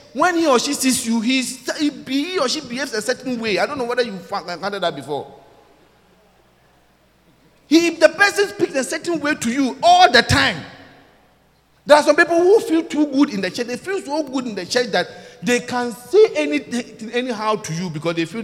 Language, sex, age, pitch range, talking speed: English, male, 40-59, 190-300 Hz, 200 wpm